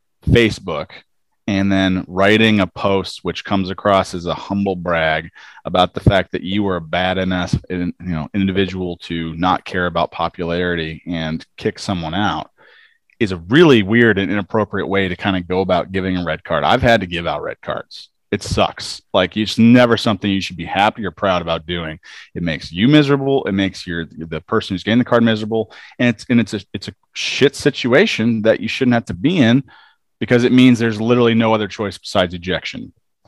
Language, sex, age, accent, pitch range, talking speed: English, male, 30-49, American, 90-115 Hz, 200 wpm